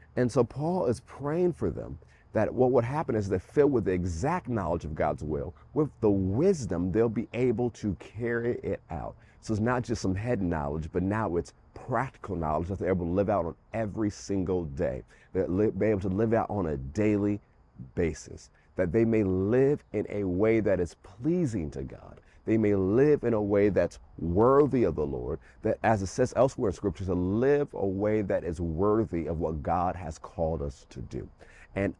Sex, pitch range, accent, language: male, 85-110 Hz, American, English